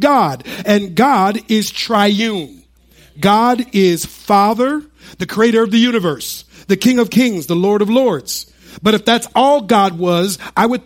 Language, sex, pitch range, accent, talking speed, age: English, male, 185-245 Hz, American, 160 wpm, 50-69